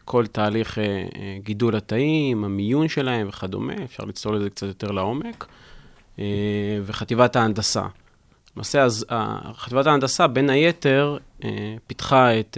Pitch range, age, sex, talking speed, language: 105-135 Hz, 30-49, male, 105 wpm, Hebrew